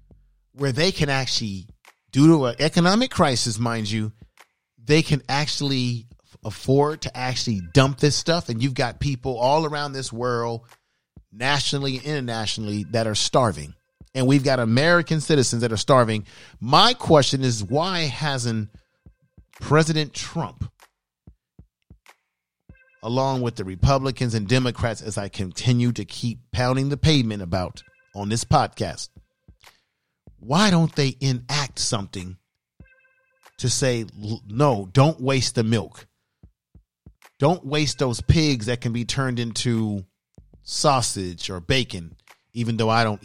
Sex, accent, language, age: male, American, English, 40-59